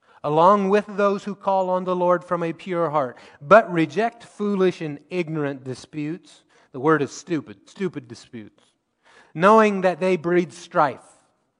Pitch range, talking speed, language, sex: 140-180 Hz, 150 wpm, English, male